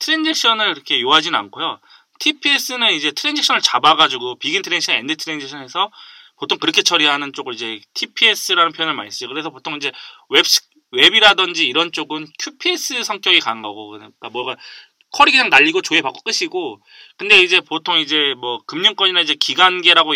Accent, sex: native, male